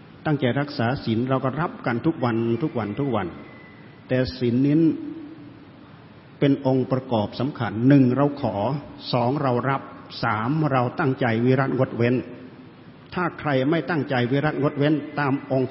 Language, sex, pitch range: Thai, male, 120-145 Hz